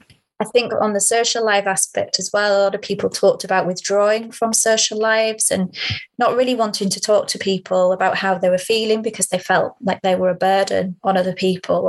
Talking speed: 215 wpm